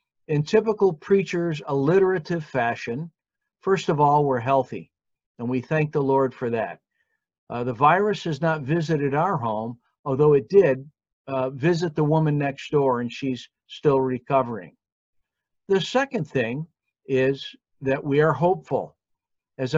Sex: male